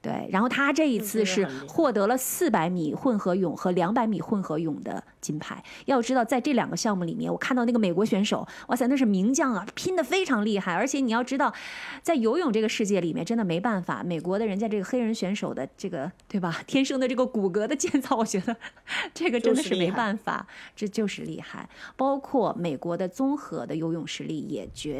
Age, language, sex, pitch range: 20-39, Chinese, female, 185-250 Hz